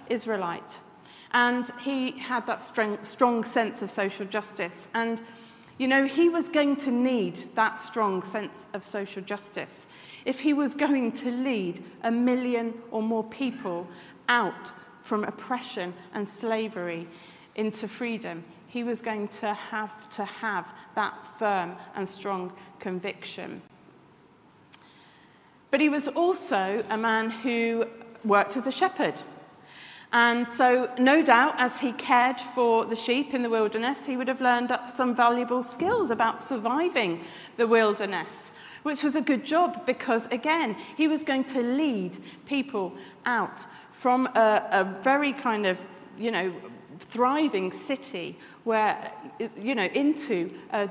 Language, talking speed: English, 140 wpm